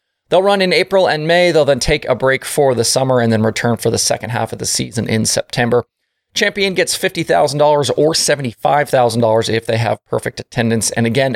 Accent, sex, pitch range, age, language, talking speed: American, male, 115-160 Hz, 30-49, English, 200 wpm